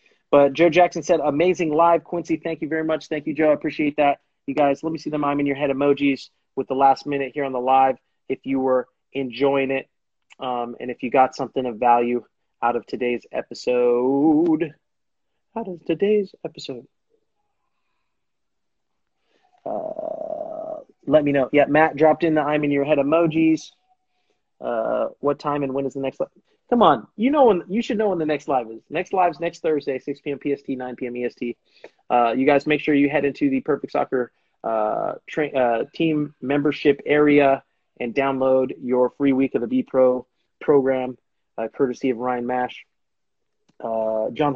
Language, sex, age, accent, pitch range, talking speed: English, male, 30-49, American, 125-155 Hz, 180 wpm